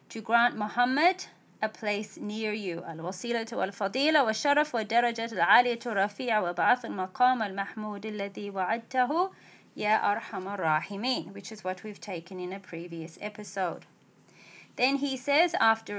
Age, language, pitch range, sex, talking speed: 30-49, English, 200-255 Hz, female, 75 wpm